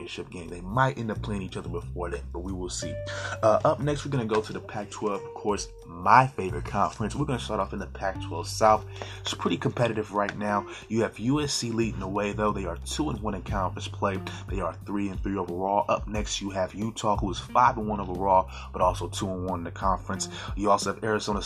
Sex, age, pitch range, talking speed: male, 20-39, 95-110 Hz, 240 wpm